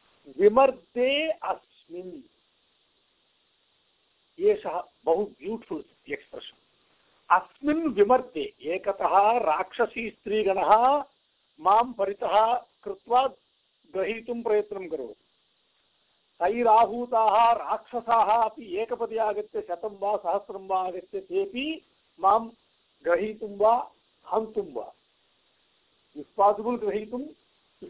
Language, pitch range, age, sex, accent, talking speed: English, 210-300 Hz, 60-79, male, Indian, 70 wpm